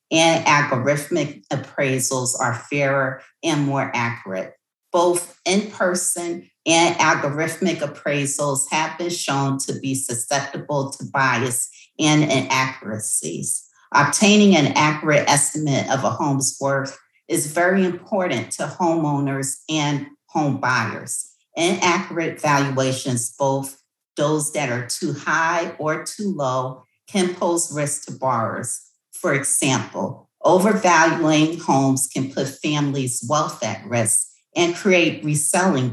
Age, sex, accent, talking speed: 40-59, female, American, 115 wpm